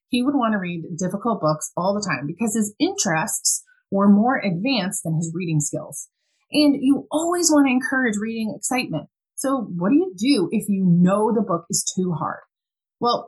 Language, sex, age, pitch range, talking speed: English, female, 30-49, 180-255 Hz, 190 wpm